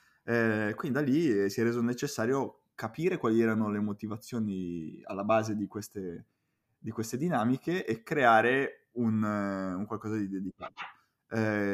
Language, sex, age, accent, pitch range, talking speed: Italian, male, 20-39, native, 100-120 Hz, 150 wpm